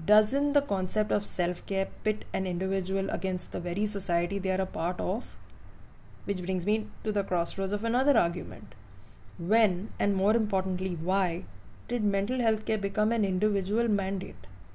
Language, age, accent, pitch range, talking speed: English, 20-39, Indian, 180-220 Hz, 160 wpm